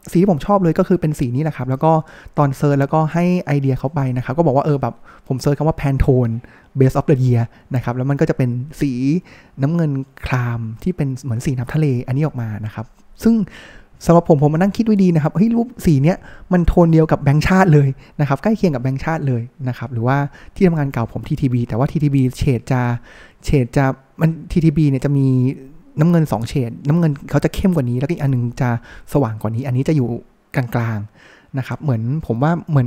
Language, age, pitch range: Thai, 20-39, 125-160 Hz